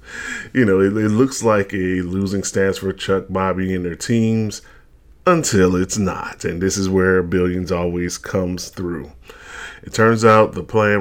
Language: English